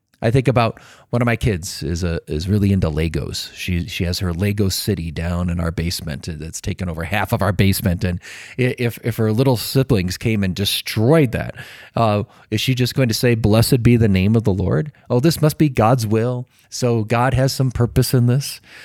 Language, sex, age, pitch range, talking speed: English, male, 30-49, 100-130 Hz, 215 wpm